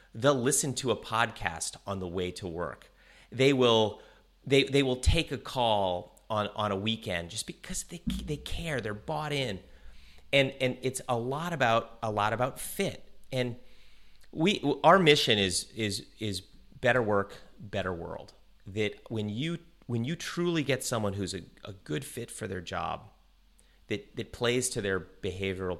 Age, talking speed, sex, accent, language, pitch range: 30-49, 170 wpm, male, American, English, 95-125 Hz